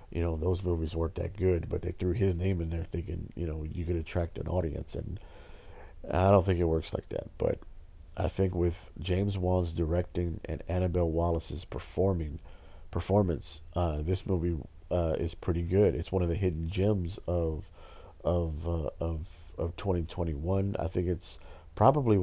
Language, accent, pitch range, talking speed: English, American, 80-90 Hz, 175 wpm